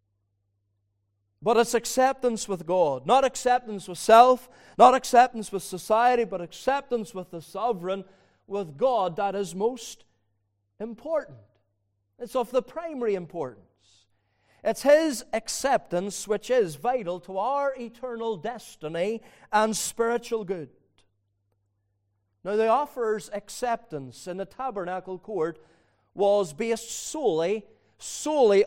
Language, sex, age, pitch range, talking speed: English, male, 40-59, 155-240 Hz, 115 wpm